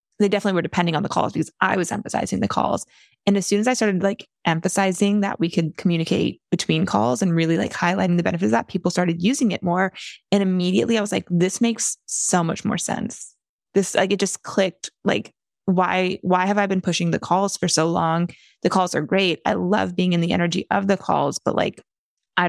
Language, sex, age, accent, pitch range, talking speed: English, female, 20-39, American, 175-200 Hz, 225 wpm